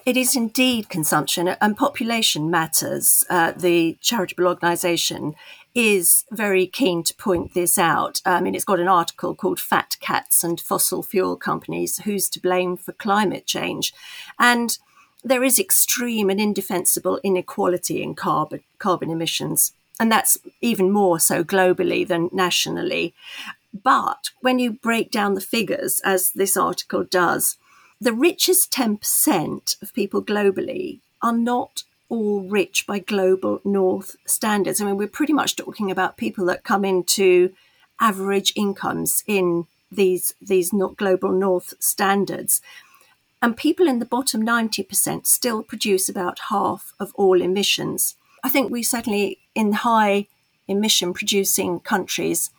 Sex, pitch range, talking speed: female, 185-235 Hz, 140 wpm